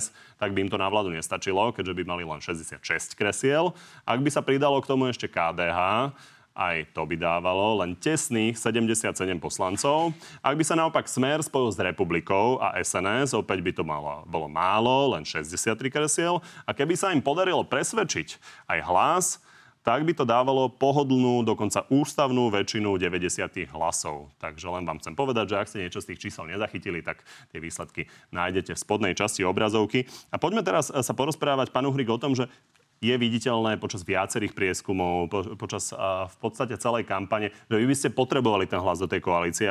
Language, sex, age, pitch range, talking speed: Slovak, male, 30-49, 95-135 Hz, 175 wpm